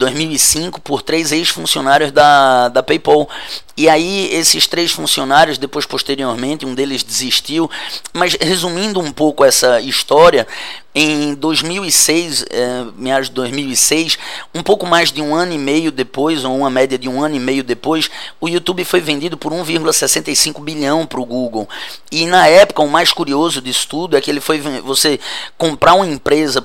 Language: Portuguese